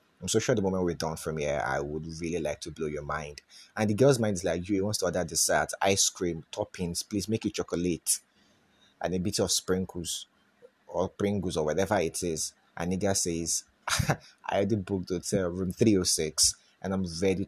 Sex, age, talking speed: male, 30-49, 205 wpm